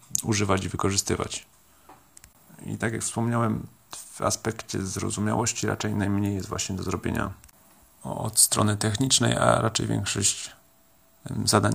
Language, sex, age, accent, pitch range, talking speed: Polish, male, 30-49, native, 95-120 Hz, 115 wpm